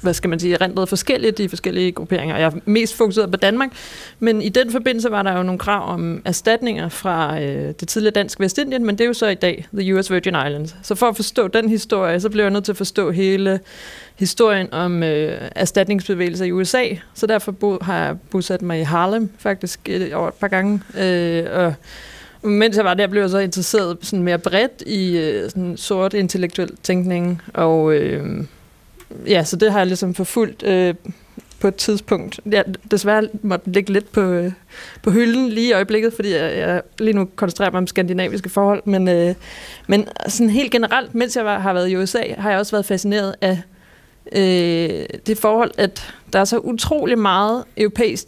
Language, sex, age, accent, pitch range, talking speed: Danish, female, 30-49, native, 185-220 Hz, 195 wpm